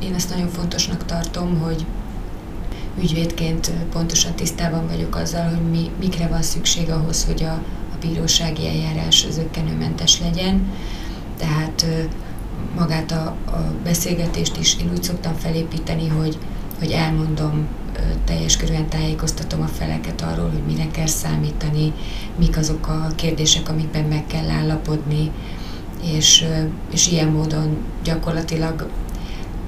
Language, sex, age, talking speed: Hungarian, female, 30-49, 120 wpm